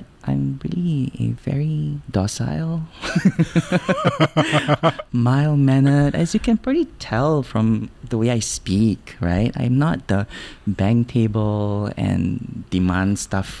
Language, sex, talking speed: English, male, 110 wpm